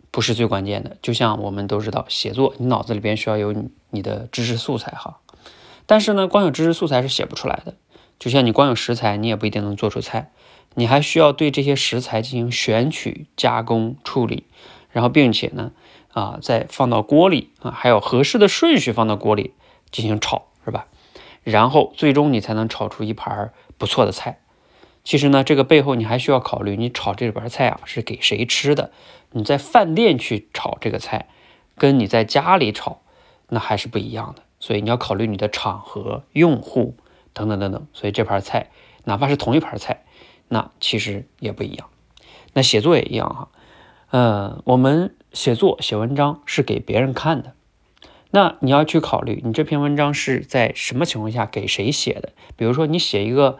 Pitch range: 110-145 Hz